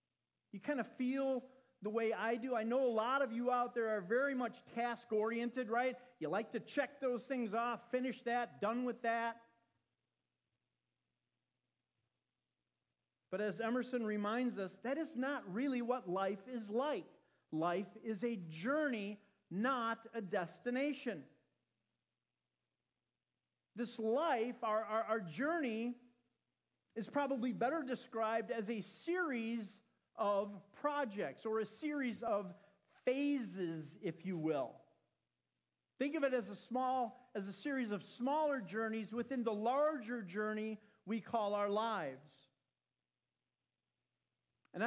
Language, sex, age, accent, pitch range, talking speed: English, male, 40-59, American, 210-255 Hz, 130 wpm